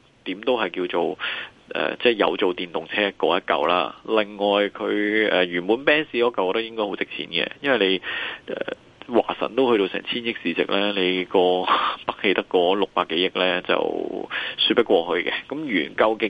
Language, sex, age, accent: Chinese, male, 20-39, native